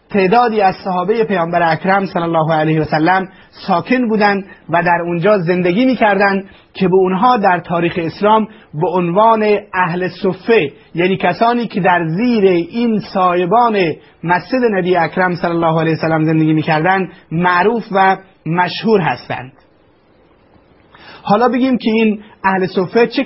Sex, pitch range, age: male, 175-215 Hz, 30-49